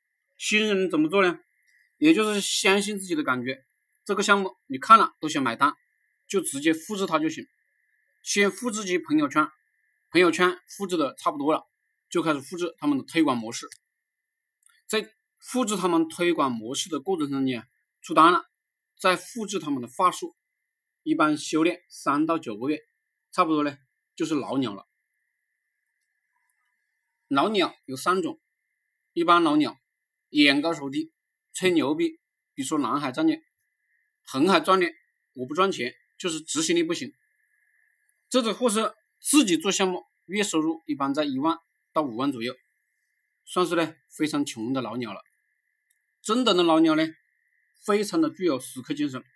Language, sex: Chinese, male